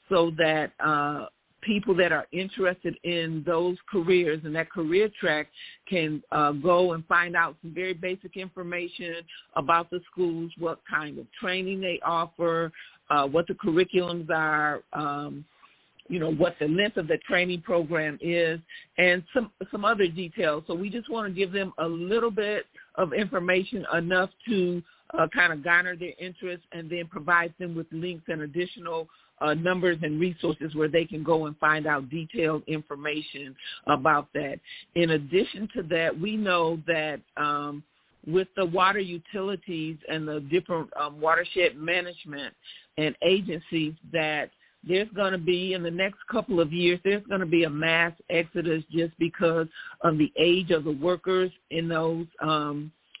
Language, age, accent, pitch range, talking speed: English, 50-69, American, 160-185 Hz, 165 wpm